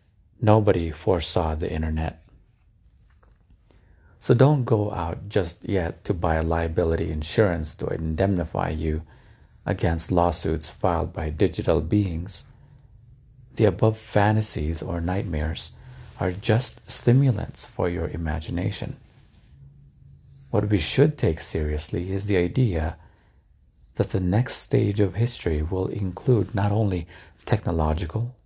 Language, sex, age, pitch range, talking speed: English, male, 50-69, 85-110 Hz, 110 wpm